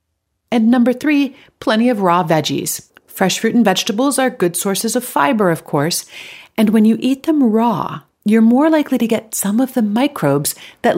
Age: 40-59